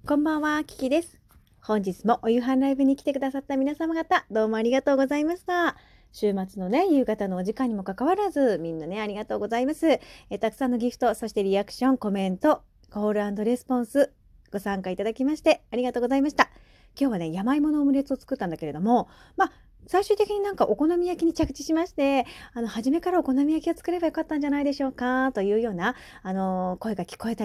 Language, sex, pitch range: Japanese, female, 200-295 Hz